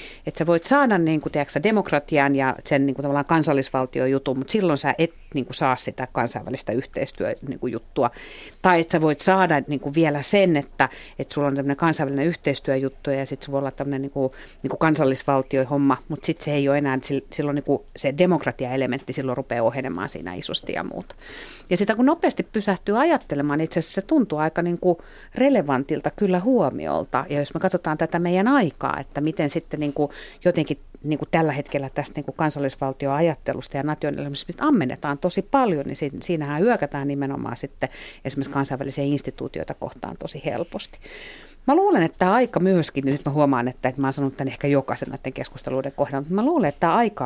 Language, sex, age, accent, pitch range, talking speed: Finnish, female, 50-69, native, 135-170 Hz, 180 wpm